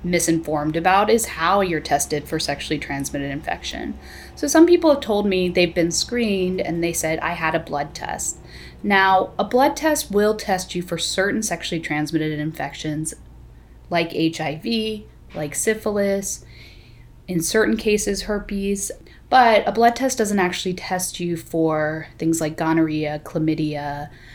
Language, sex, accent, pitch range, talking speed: English, female, American, 155-195 Hz, 150 wpm